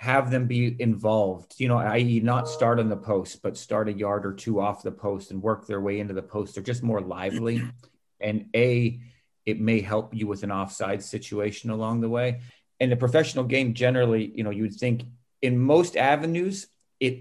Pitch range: 105-130 Hz